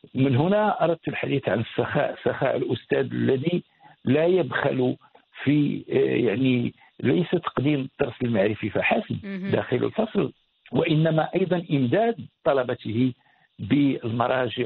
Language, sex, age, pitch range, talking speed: Arabic, male, 60-79, 120-150 Hz, 100 wpm